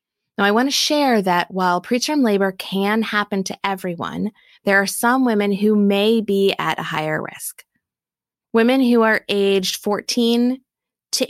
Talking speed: 160 wpm